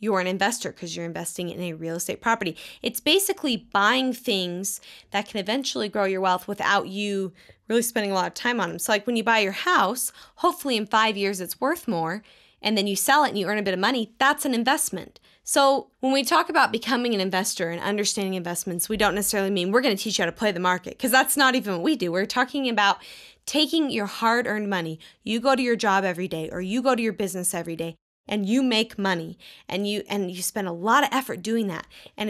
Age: 10-29